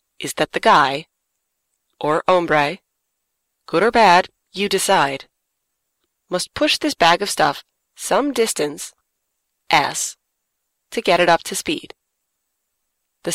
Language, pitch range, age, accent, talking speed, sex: English, 160-215 Hz, 30-49, American, 120 wpm, female